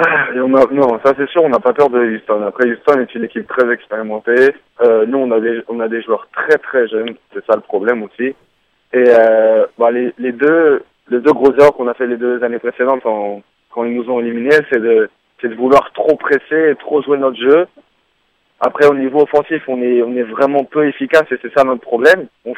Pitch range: 125-150 Hz